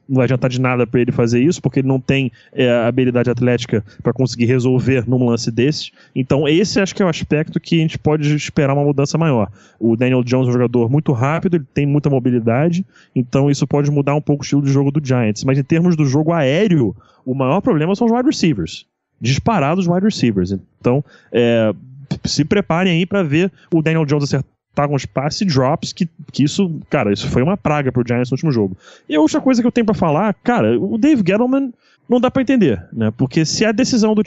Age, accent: 20-39, Brazilian